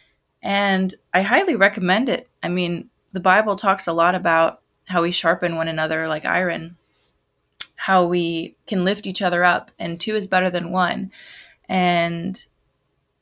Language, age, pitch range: English, 20-39, 170-195 Hz